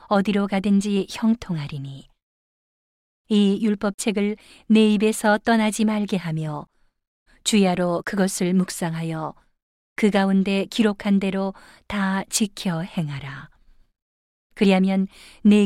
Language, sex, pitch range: Korean, female, 165-210 Hz